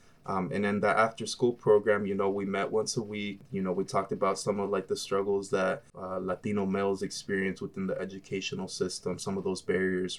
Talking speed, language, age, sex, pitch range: 220 wpm, English, 20-39, male, 95-125 Hz